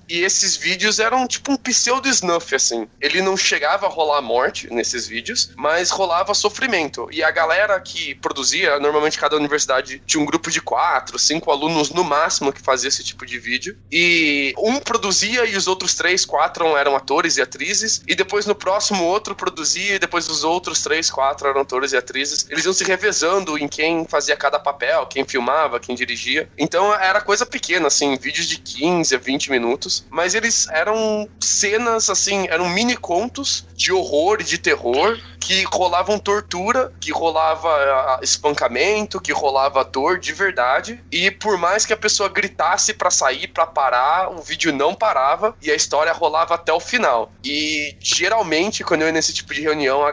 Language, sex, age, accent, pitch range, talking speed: Portuguese, male, 20-39, Brazilian, 145-200 Hz, 180 wpm